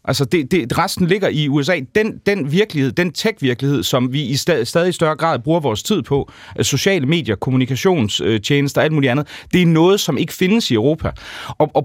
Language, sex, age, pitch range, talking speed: Danish, male, 30-49, 130-170 Hz, 205 wpm